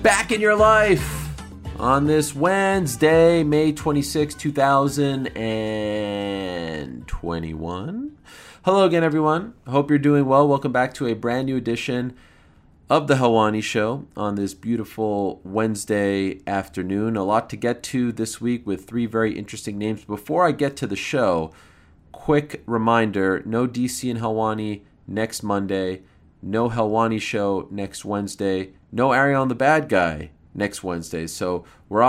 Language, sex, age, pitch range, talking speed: English, male, 30-49, 90-120 Hz, 140 wpm